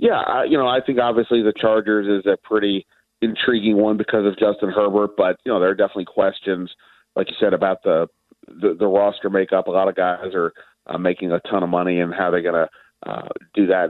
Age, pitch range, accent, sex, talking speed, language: 40-59, 95-120 Hz, American, male, 225 wpm, English